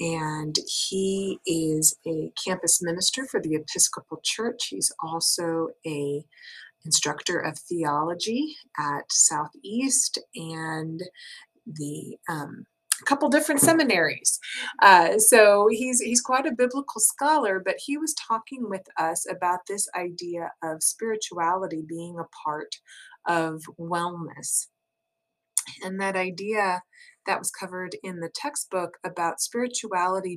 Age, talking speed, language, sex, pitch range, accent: 30-49, 115 wpm, English, female, 165-215 Hz, American